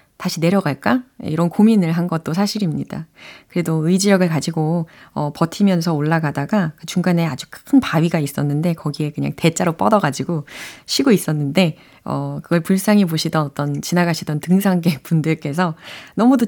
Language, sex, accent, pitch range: Korean, female, native, 155-215 Hz